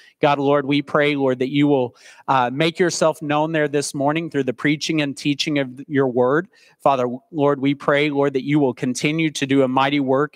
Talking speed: 215 wpm